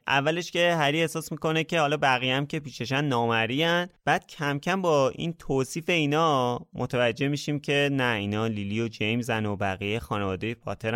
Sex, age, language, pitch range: male, 20-39, Persian, 100-135 Hz